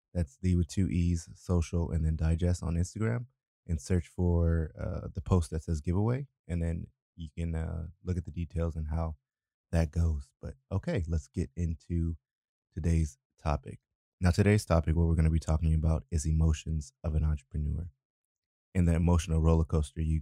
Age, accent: 20-39, American